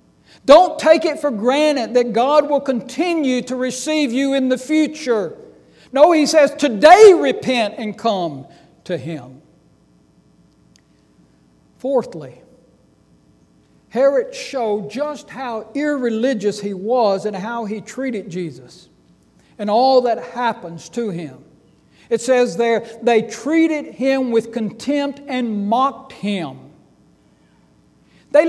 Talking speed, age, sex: 115 wpm, 60-79, male